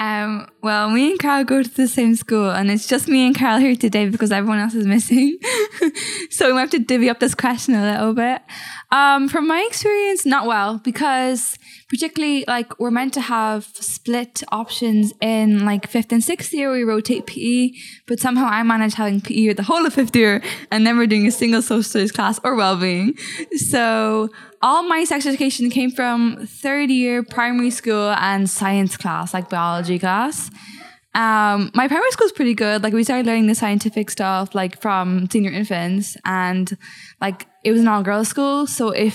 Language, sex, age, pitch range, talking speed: English, female, 10-29, 210-265 Hz, 190 wpm